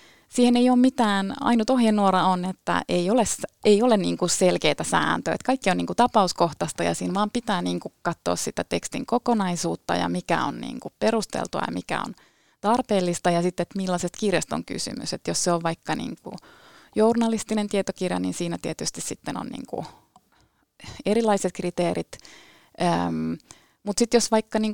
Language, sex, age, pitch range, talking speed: Finnish, female, 30-49, 165-220 Hz, 165 wpm